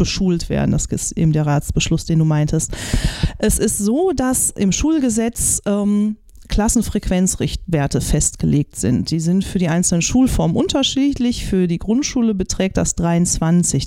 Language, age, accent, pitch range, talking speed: German, 30-49, German, 170-225 Hz, 140 wpm